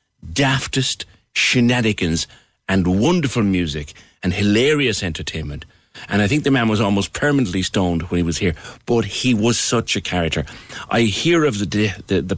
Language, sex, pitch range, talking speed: English, male, 85-115 Hz, 160 wpm